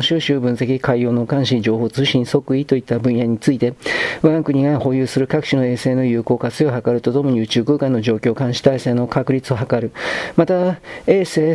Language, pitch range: Japanese, 125-150 Hz